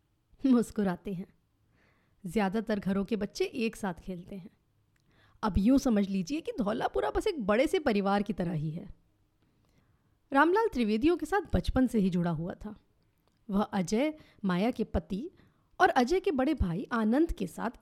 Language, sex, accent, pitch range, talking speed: Hindi, female, native, 195-300 Hz, 160 wpm